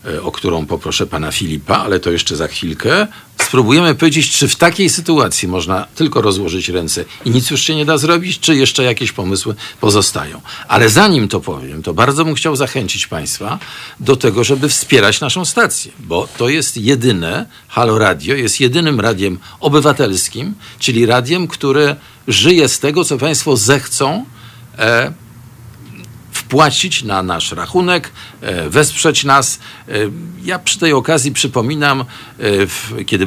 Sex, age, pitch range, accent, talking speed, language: male, 50-69, 105-155 Hz, native, 140 wpm, Polish